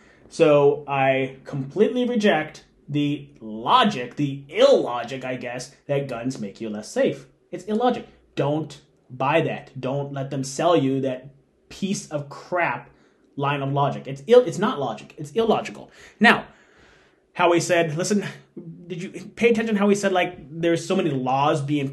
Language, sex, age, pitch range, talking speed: English, male, 30-49, 140-195 Hz, 155 wpm